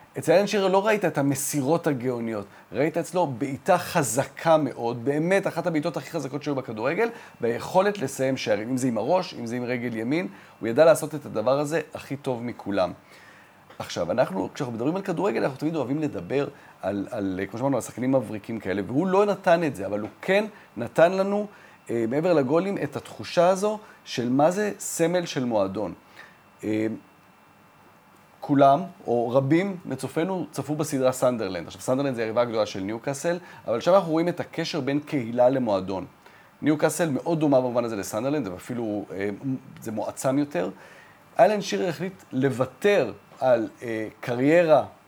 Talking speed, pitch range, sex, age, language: 160 wpm, 120-170 Hz, male, 40-59, Hebrew